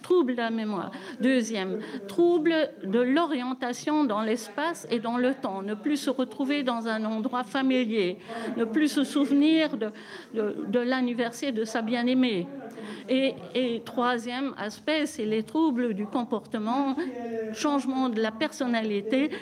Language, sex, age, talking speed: French, female, 50-69, 140 wpm